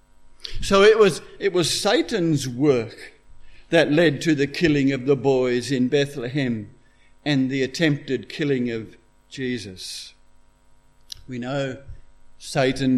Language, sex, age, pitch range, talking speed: English, male, 60-79, 130-165 Hz, 115 wpm